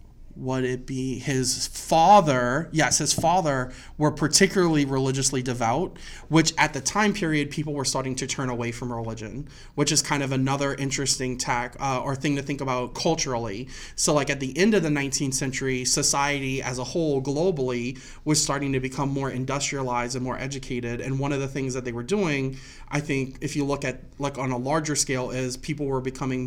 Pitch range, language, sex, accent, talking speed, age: 125-145 Hz, English, male, American, 195 wpm, 30-49